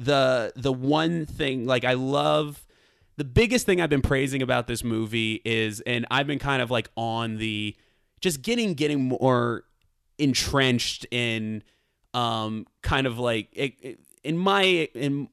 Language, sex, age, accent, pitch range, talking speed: English, male, 20-39, American, 100-125 Hz, 155 wpm